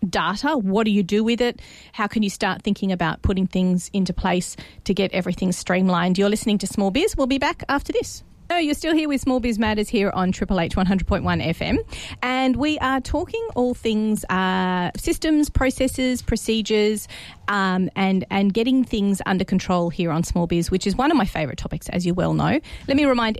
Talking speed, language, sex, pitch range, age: 205 wpm, English, female, 180-230 Hz, 30-49